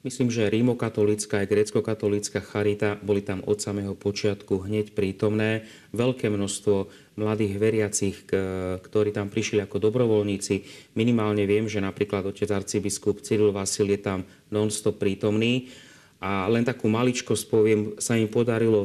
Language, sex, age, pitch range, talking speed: Slovak, male, 30-49, 100-110 Hz, 135 wpm